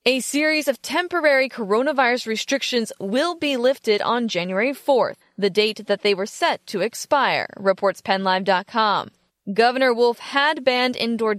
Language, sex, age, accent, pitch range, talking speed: English, female, 20-39, American, 210-270 Hz, 140 wpm